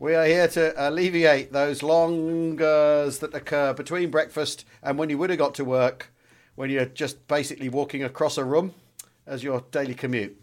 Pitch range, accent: 145-180 Hz, British